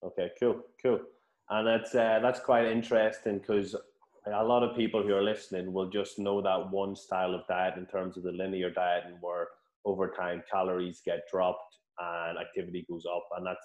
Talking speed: 195 wpm